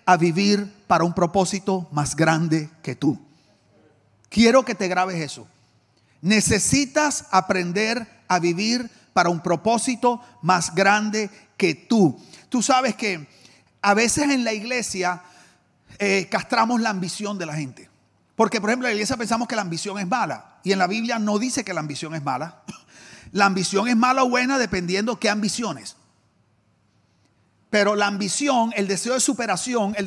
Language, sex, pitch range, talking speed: English, male, 180-245 Hz, 160 wpm